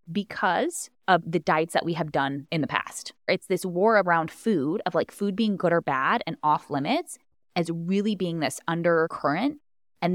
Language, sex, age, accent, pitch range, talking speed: English, female, 20-39, American, 155-200 Hz, 190 wpm